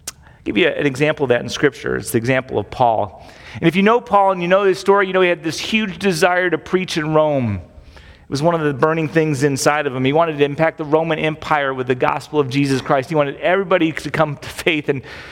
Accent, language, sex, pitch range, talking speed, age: American, English, male, 135-185 Hz, 255 wpm, 40-59